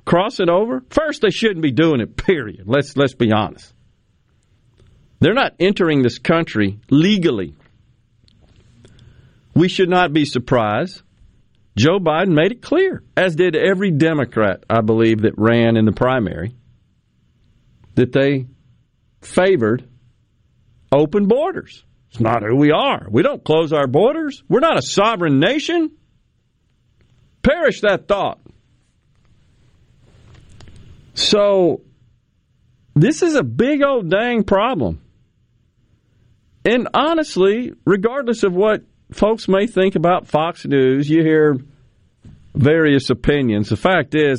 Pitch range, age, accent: 115-175 Hz, 50-69, American